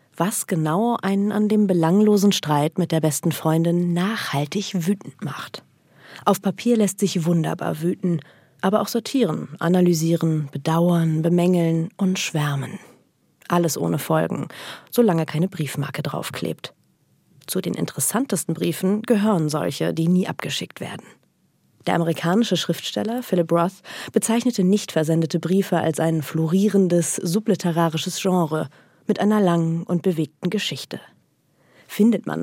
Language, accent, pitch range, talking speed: German, German, 160-210 Hz, 125 wpm